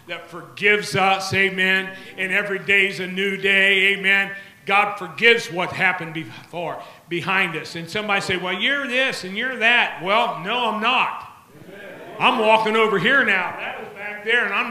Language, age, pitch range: English, 50-69, 185-230 Hz